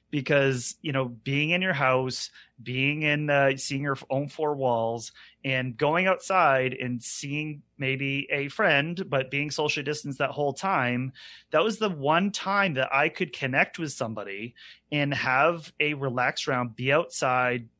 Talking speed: 160 wpm